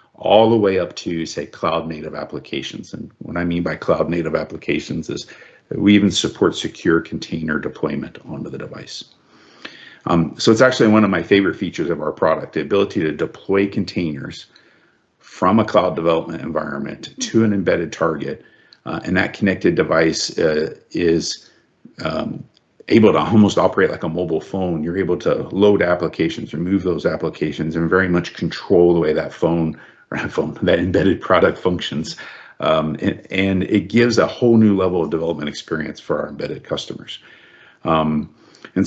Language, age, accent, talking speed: English, 50-69, American, 160 wpm